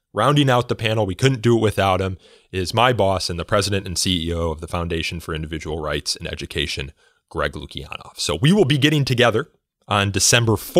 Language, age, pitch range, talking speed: English, 30-49, 85-115 Hz, 200 wpm